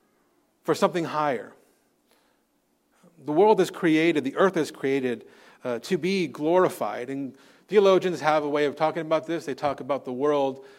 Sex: male